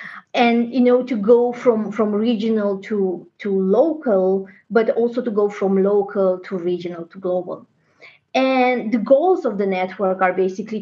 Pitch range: 185-240 Hz